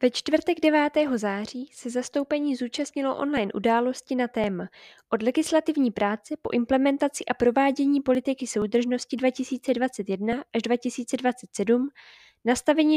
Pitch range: 220-270 Hz